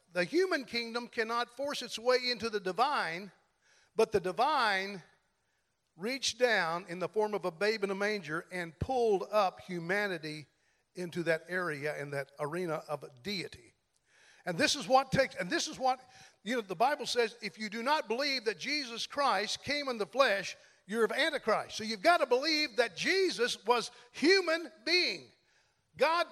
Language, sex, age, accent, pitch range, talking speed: English, male, 50-69, American, 190-260 Hz, 175 wpm